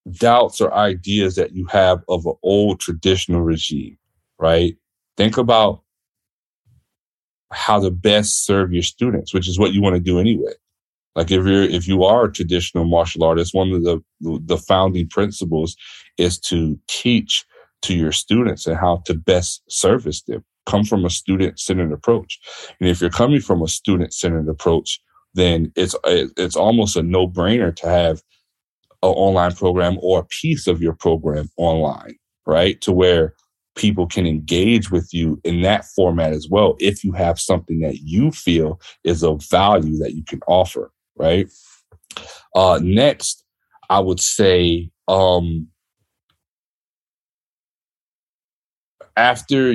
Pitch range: 85-100 Hz